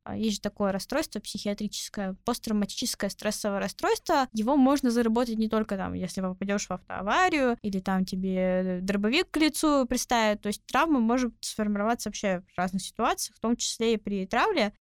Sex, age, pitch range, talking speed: female, 10-29, 195-240 Hz, 160 wpm